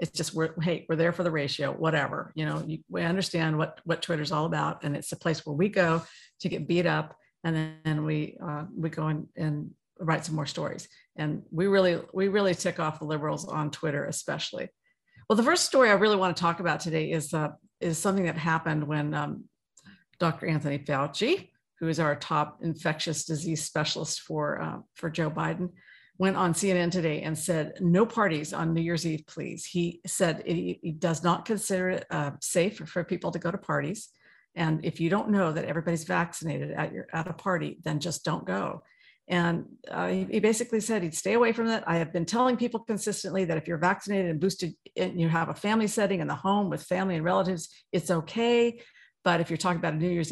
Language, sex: English, female